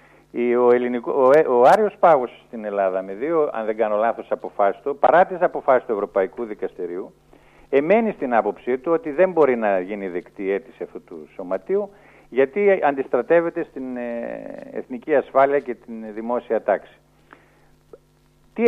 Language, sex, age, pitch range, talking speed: Greek, male, 50-69, 115-175 Hz, 140 wpm